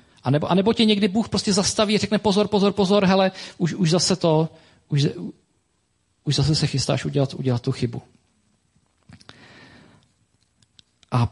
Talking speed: 155 wpm